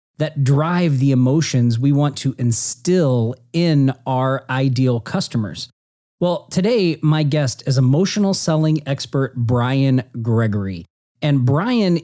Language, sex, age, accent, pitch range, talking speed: English, male, 40-59, American, 125-165 Hz, 120 wpm